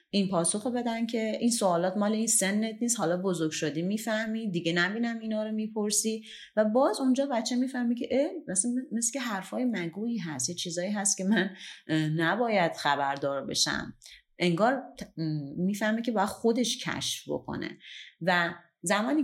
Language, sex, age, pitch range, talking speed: Persian, female, 30-49, 160-225 Hz, 150 wpm